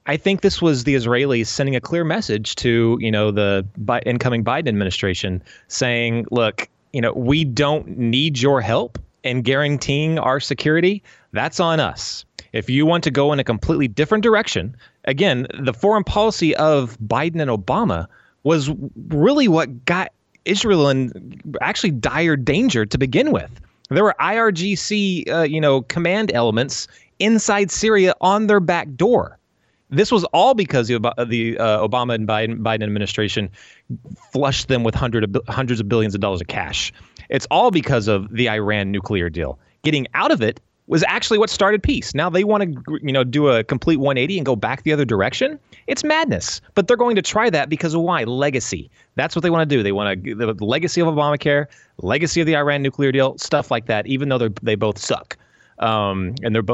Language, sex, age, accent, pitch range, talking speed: English, male, 30-49, American, 115-165 Hz, 185 wpm